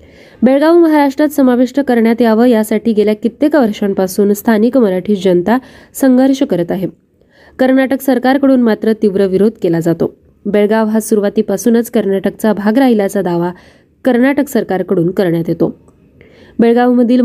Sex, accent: female, native